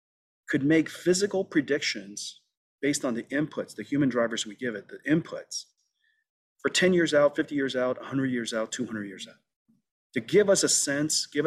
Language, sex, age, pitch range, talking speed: English, male, 40-59, 115-150 Hz, 185 wpm